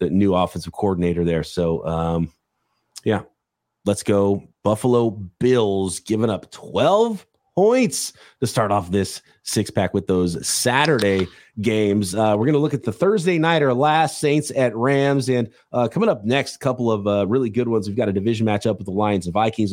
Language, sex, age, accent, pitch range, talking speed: English, male, 30-49, American, 100-170 Hz, 185 wpm